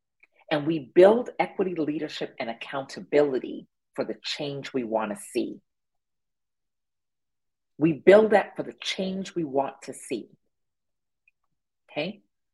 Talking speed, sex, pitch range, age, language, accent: 115 wpm, female, 150-215 Hz, 40-59, English, American